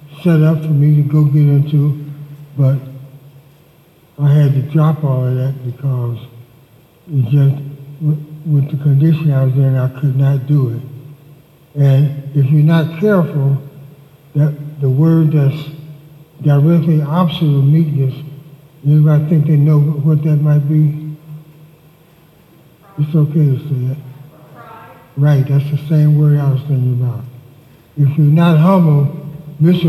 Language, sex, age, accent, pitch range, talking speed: English, male, 60-79, American, 140-155 Hz, 135 wpm